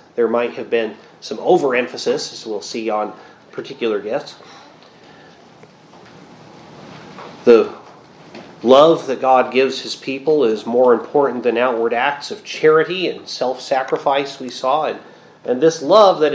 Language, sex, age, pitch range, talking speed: English, male, 30-49, 120-145 Hz, 130 wpm